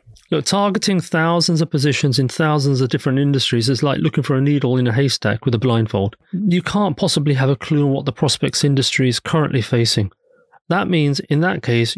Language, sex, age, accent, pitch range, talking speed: English, male, 30-49, British, 135-180 Hz, 200 wpm